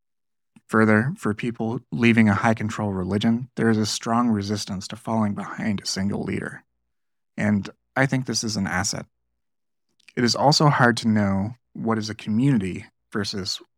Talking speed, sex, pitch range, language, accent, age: 155 wpm, male, 100-115 Hz, English, American, 30-49